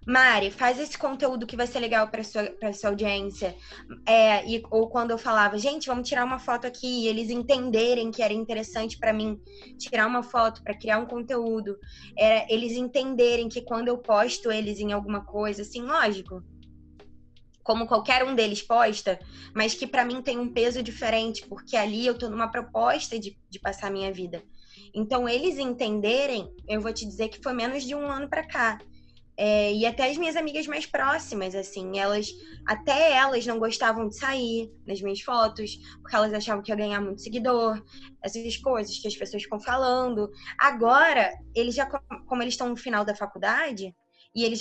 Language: Portuguese